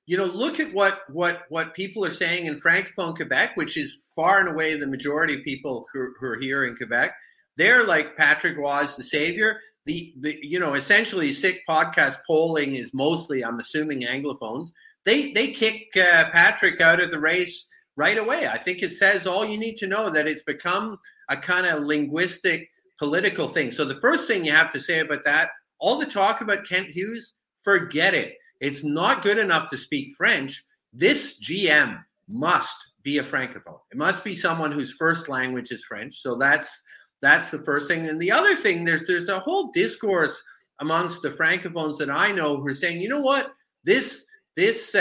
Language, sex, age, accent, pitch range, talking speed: English, male, 50-69, American, 150-215 Hz, 195 wpm